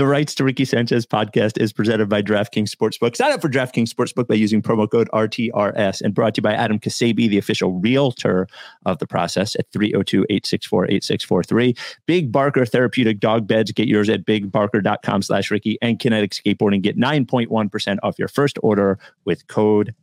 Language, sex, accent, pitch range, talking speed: English, male, American, 105-135 Hz, 175 wpm